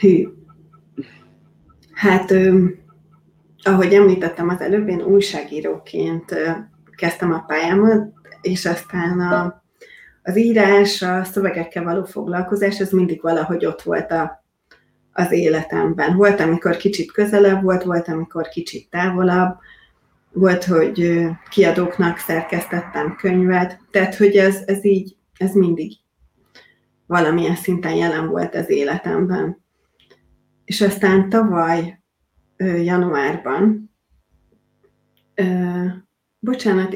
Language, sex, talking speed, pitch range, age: Hungarian, female, 95 wpm, 170-195 Hz, 30-49